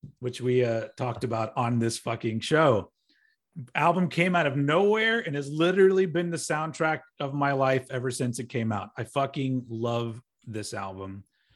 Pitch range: 125-170 Hz